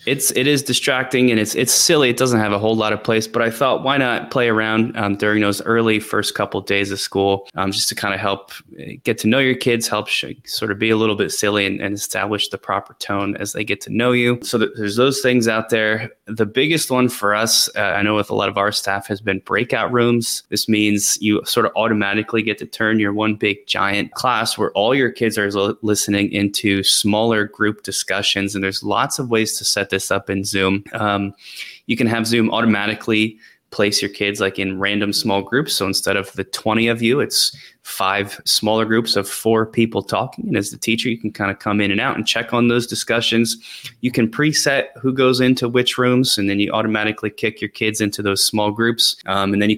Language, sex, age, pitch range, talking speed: English, male, 20-39, 100-120 Hz, 235 wpm